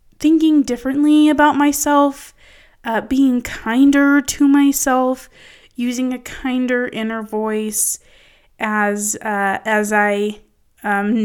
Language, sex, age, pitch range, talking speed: English, female, 20-39, 215-275 Hz, 100 wpm